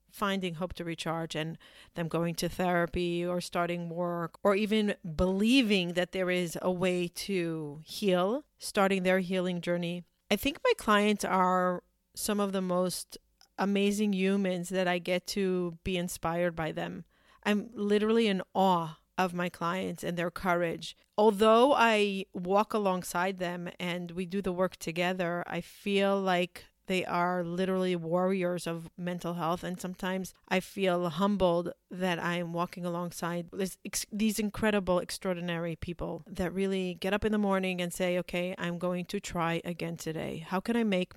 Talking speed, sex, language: 160 wpm, female, English